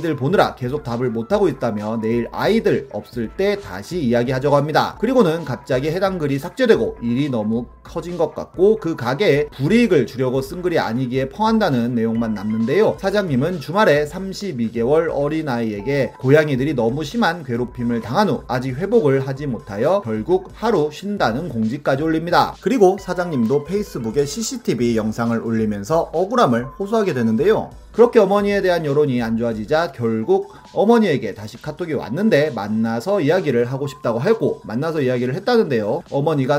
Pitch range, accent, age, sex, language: 120-185 Hz, native, 30-49, male, Korean